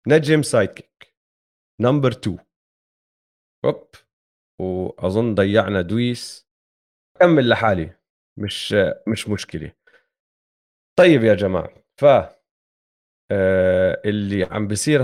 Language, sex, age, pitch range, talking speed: Arabic, male, 30-49, 100-130 Hz, 80 wpm